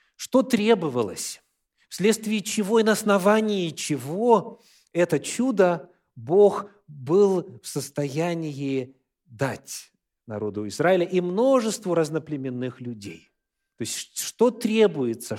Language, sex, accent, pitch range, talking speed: Russian, male, native, 125-195 Hz, 100 wpm